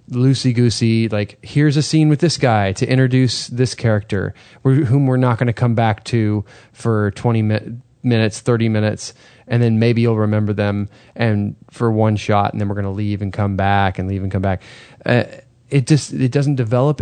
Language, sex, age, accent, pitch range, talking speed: English, male, 20-39, American, 110-135 Hz, 195 wpm